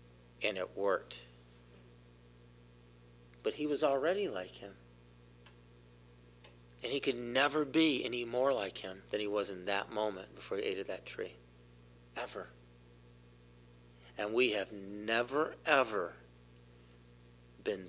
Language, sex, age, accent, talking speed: English, male, 50-69, American, 125 wpm